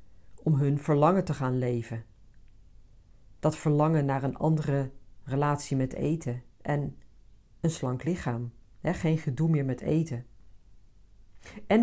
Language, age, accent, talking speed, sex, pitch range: Dutch, 50-69, Dutch, 120 wpm, female, 105-165 Hz